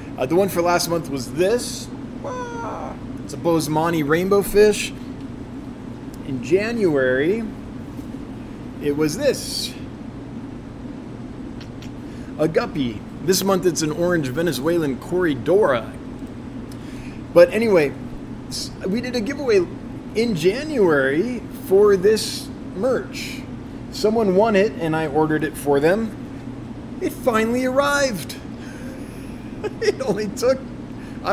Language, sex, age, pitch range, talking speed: English, male, 20-39, 135-190 Hz, 105 wpm